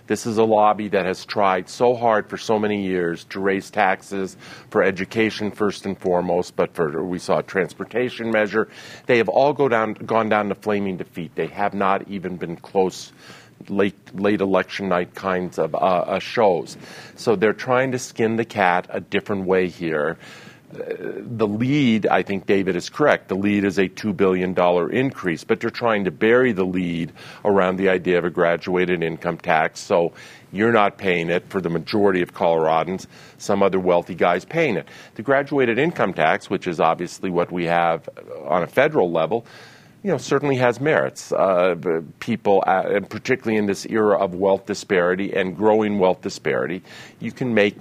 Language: English